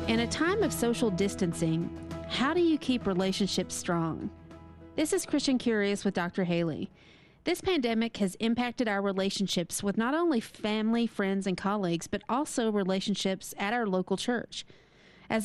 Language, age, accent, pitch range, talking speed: English, 40-59, American, 185-235 Hz, 155 wpm